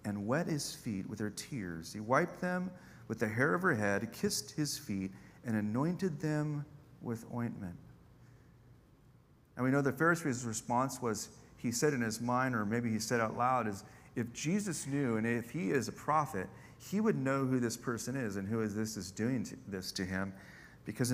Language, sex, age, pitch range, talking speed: English, male, 40-59, 110-135 Hz, 195 wpm